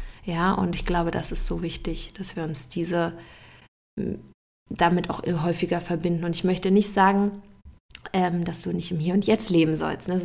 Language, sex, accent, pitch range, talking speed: German, female, German, 170-195 Hz, 180 wpm